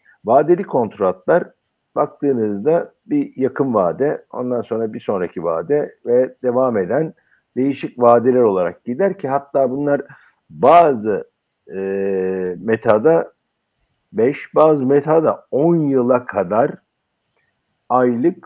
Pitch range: 120-180 Hz